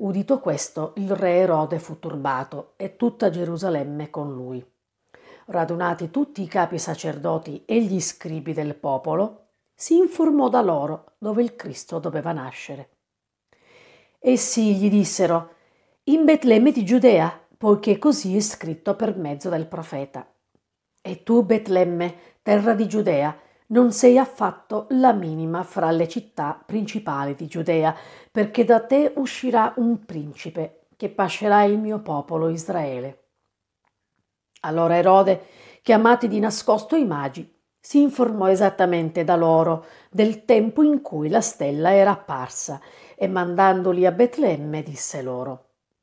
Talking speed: 130 wpm